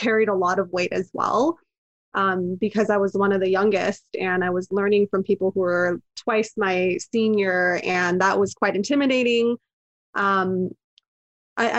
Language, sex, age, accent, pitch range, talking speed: English, female, 20-39, American, 185-220 Hz, 170 wpm